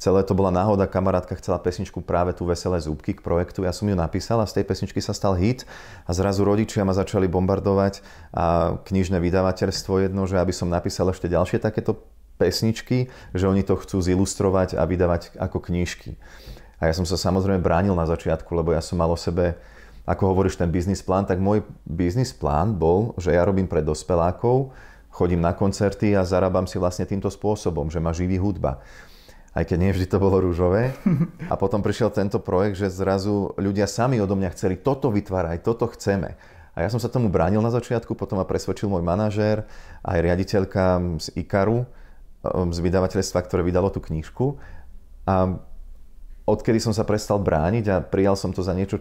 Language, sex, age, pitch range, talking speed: Slovak, male, 30-49, 90-100 Hz, 185 wpm